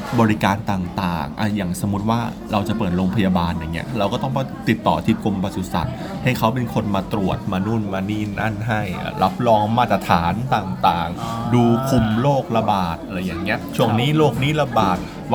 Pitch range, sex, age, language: 95-125 Hz, male, 20-39, Thai